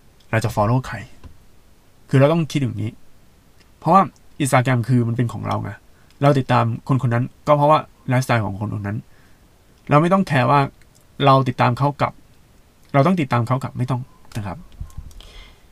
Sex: male